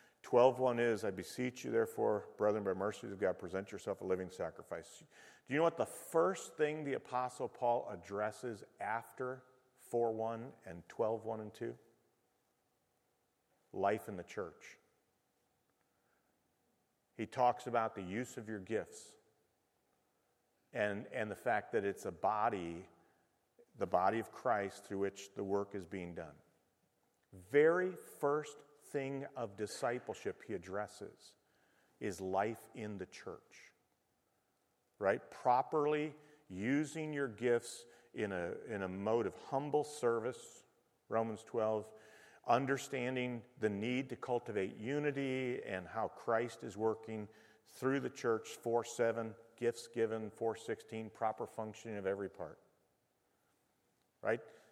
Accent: American